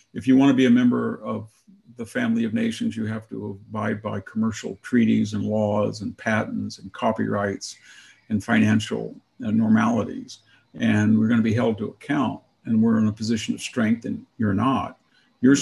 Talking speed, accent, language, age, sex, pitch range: 175 wpm, American, English, 50-69, male, 110-140 Hz